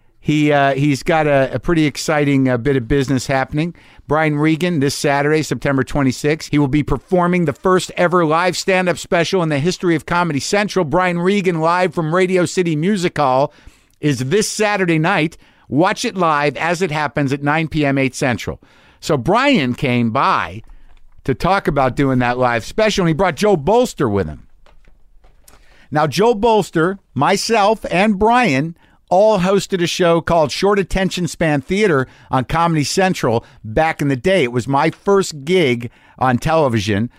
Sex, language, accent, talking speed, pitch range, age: male, English, American, 170 wpm, 130-180 Hz, 50-69